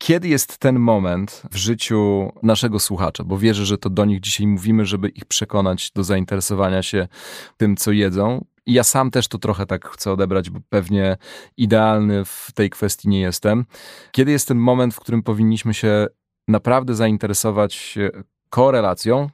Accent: native